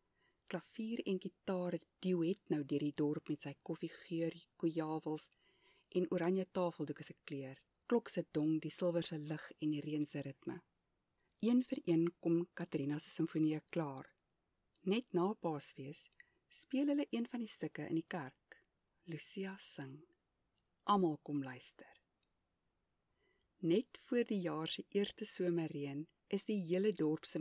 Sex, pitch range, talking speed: female, 155-205 Hz, 125 wpm